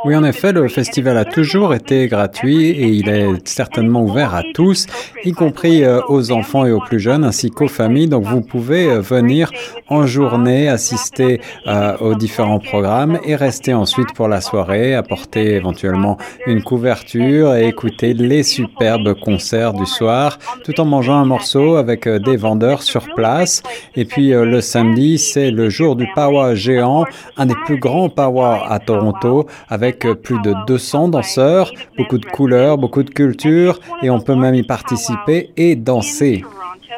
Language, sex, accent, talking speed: French, male, French, 170 wpm